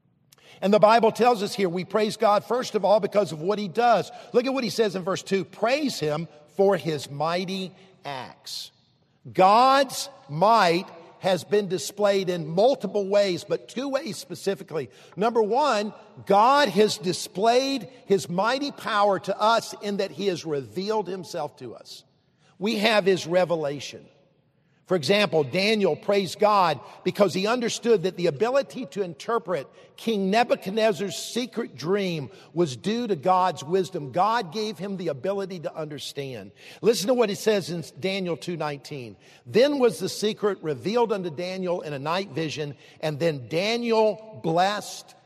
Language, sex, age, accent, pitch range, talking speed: English, male, 50-69, American, 165-215 Hz, 155 wpm